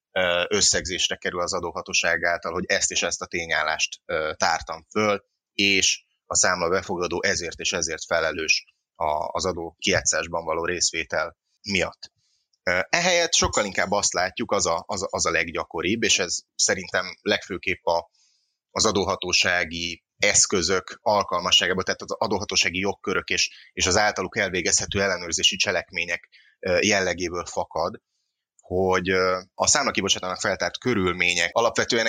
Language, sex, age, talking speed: Hungarian, male, 30-49, 115 wpm